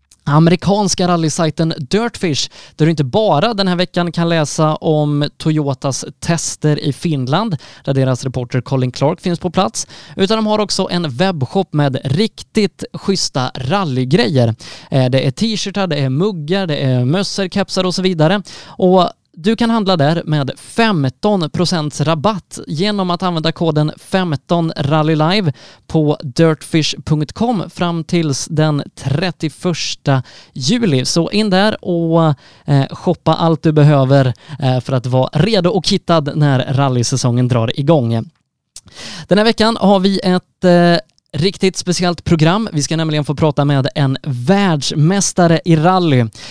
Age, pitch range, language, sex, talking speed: 20-39, 140-185 Hz, Swedish, male, 135 wpm